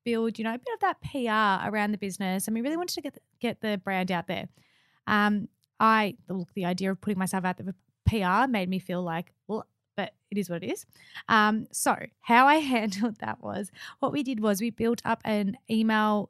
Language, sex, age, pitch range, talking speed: English, female, 20-39, 190-235 Hz, 220 wpm